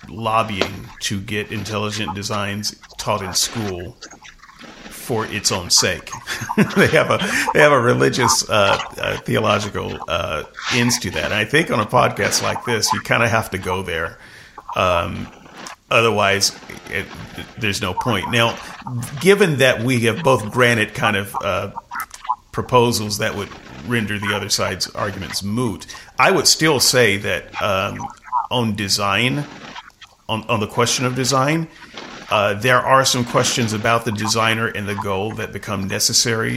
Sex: male